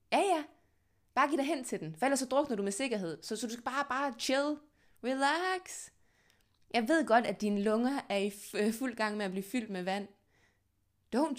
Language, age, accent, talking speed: Danish, 20-39, native, 215 wpm